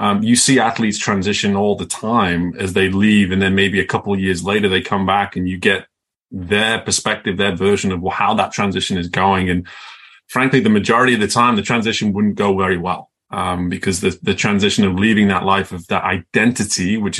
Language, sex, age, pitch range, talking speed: English, male, 20-39, 100-135 Hz, 215 wpm